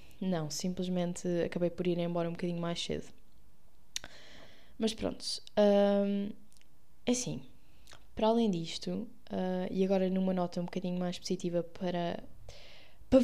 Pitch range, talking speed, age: 175-210 Hz, 125 wpm, 20-39